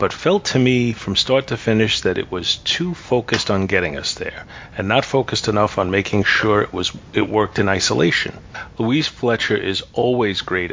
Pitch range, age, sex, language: 95-120 Hz, 40-59, male, English